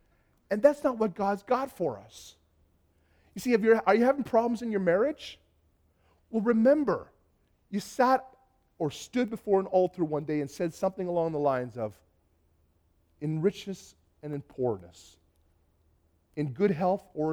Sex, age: male, 40-59